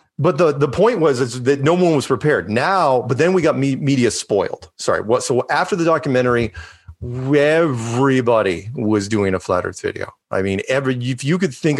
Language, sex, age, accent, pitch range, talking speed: English, male, 30-49, American, 105-145 Hz, 200 wpm